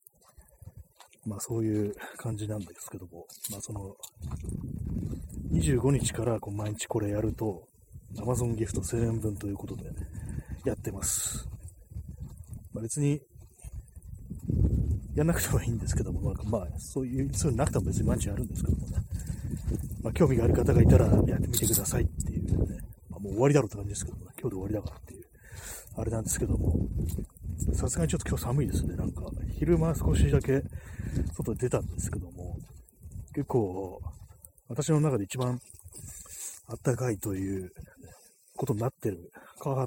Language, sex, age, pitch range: Japanese, male, 30-49, 95-125 Hz